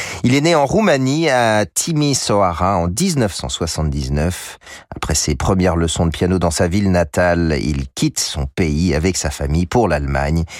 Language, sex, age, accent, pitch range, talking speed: French, male, 40-59, French, 80-110 Hz, 160 wpm